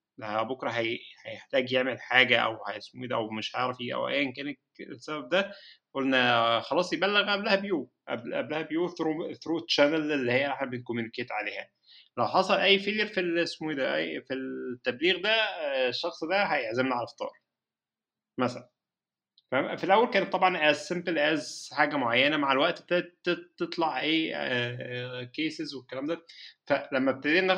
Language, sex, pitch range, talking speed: Arabic, male, 125-170 Hz, 145 wpm